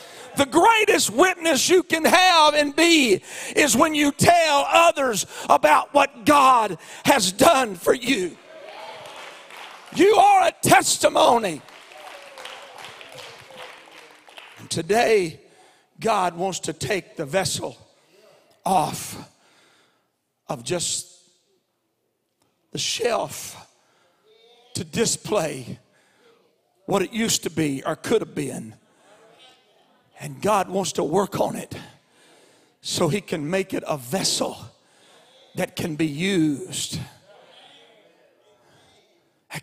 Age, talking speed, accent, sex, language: 50-69, 100 wpm, American, male, English